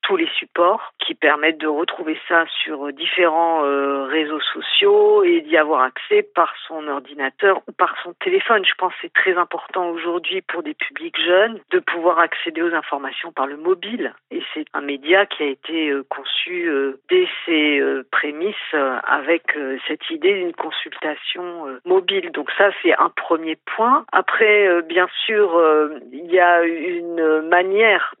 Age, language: 50-69, French